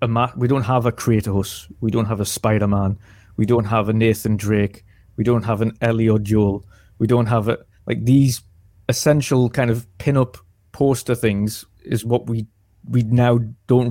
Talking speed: 185 wpm